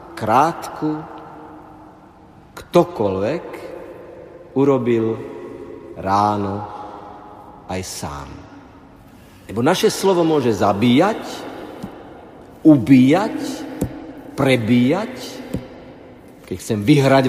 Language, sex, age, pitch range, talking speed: Slovak, male, 50-69, 105-150 Hz, 50 wpm